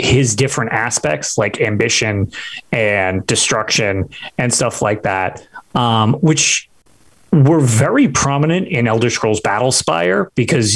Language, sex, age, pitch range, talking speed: English, male, 30-49, 115-155 Hz, 125 wpm